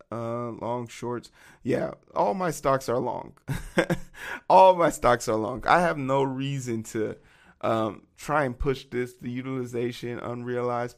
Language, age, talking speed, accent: English, 20-39, 150 wpm, American